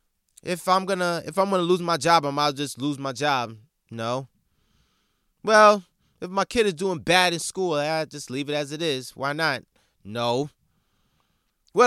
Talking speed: 180 wpm